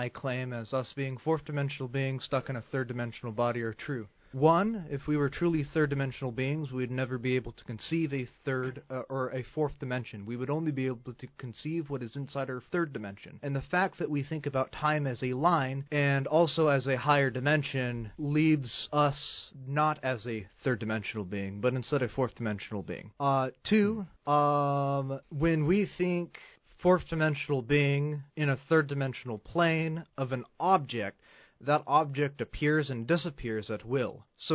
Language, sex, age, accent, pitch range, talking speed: English, male, 30-49, American, 125-155 Hz, 175 wpm